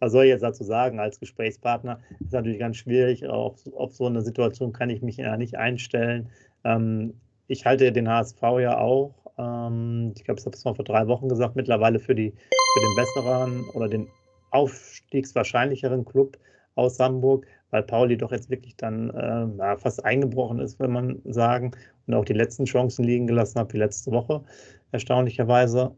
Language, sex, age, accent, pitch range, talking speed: German, male, 30-49, German, 110-130 Hz, 180 wpm